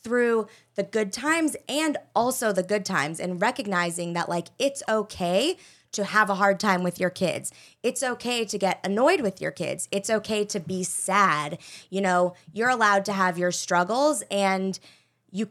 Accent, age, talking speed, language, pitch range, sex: American, 20-39, 180 wpm, English, 175-210 Hz, female